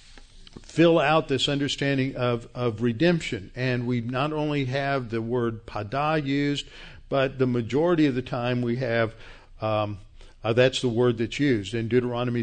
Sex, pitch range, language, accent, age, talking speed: male, 115-145 Hz, English, American, 50-69, 160 wpm